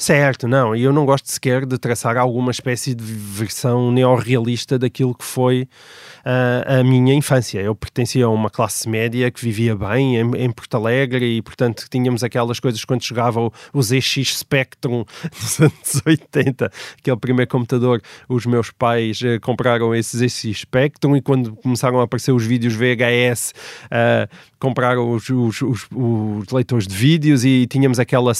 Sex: male